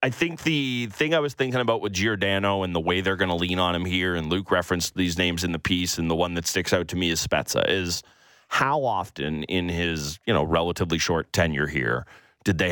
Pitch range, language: 90-125 Hz, English